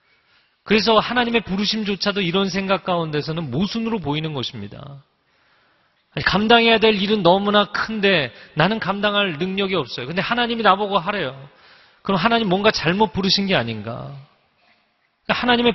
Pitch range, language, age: 140-195 Hz, Korean, 30-49